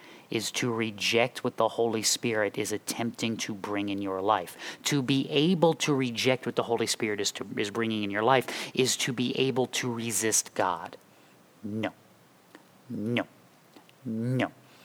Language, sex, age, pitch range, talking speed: English, male, 30-49, 110-125 Hz, 160 wpm